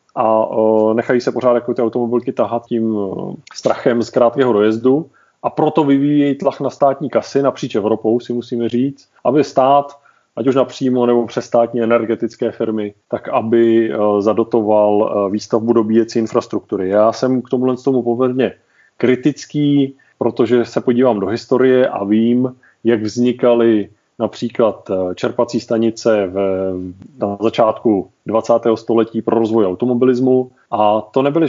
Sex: male